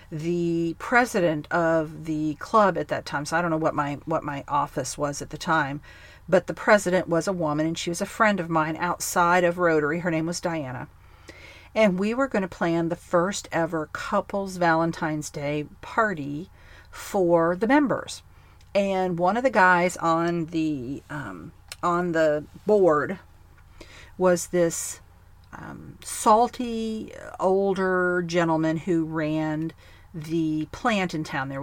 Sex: female